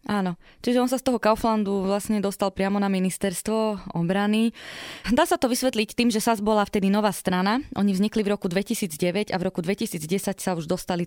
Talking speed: 195 wpm